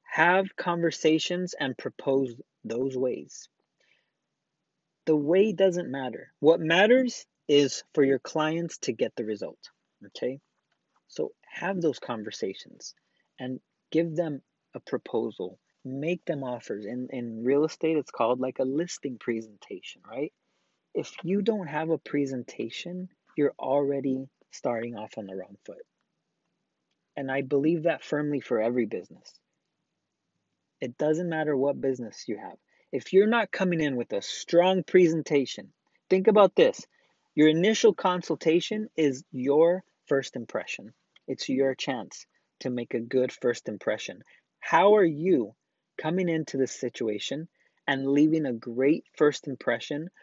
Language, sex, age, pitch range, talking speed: English, male, 30-49, 130-175 Hz, 135 wpm